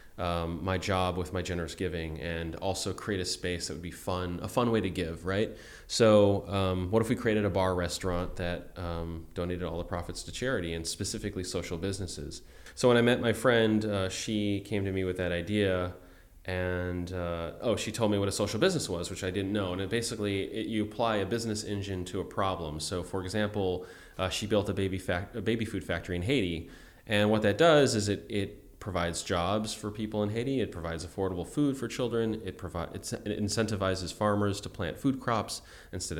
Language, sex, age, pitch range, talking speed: English, male, 20-39, 90-110 Hz, 210 wpm